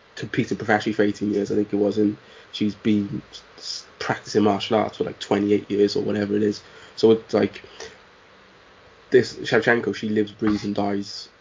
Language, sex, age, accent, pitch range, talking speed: English, male, 20-39, British, 105-110 Hz, 175 wpm